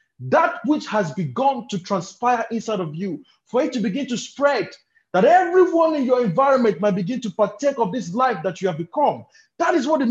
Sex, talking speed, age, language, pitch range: male, 210 wpm, 30-49, English, 150-245 Hz